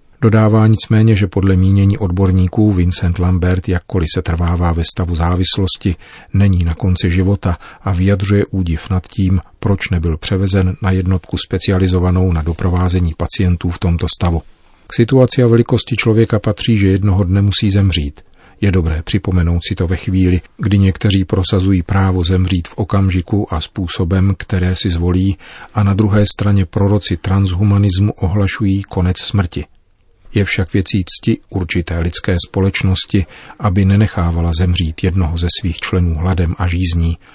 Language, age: Czech, 40-59